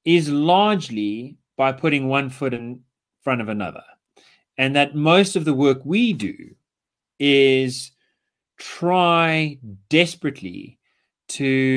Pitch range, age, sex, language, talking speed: 120-155 Hz, 30-49, male, English, 110 wpm